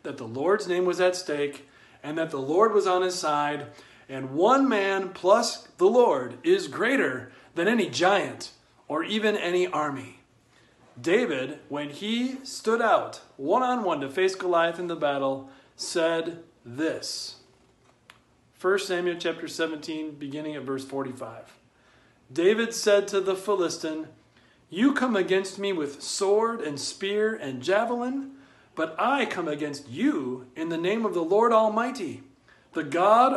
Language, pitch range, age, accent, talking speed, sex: English, 150-250 Hz, 40-59, American, 145 wpm, male